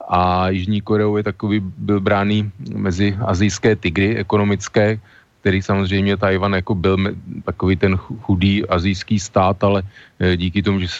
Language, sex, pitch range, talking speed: Slovak, male, 95-105 Hz, 130 wpm